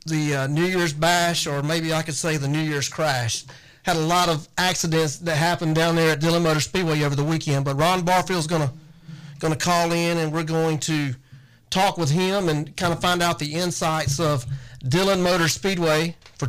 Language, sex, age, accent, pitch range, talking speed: English, male, 40-59, American, 140-170 Hz, 205 wpm